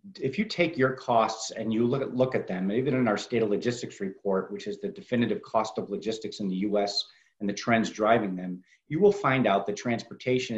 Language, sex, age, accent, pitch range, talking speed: English, male, 50-69, American, 105-130 Hz, 220 wpm